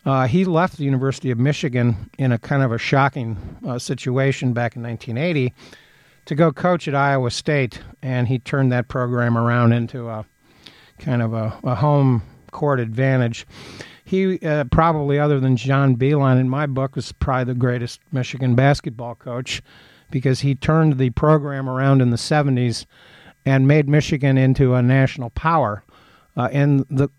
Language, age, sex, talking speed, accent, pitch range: English, 50-69, male, 165 wpm, American, 120-140 Hz